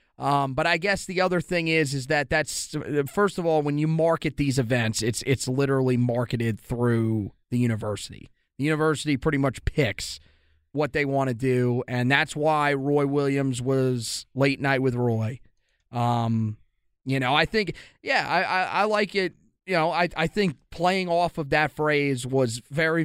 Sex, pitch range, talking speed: male, 135-165 Hz, 180 wpm